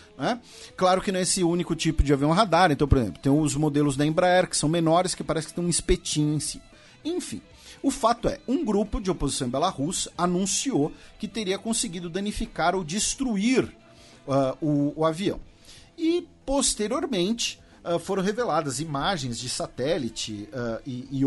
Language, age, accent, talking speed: Portuguese, 50-69, Brazilian, 165 wpm